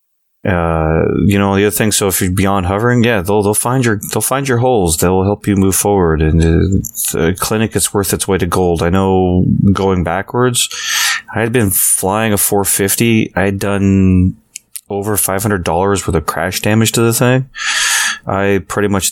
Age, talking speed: 30-49, 190 wpm